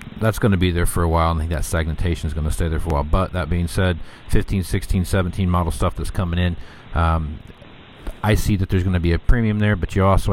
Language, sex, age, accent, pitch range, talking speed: English, male, 40-59, American, 80-95 Hz, 265 wpm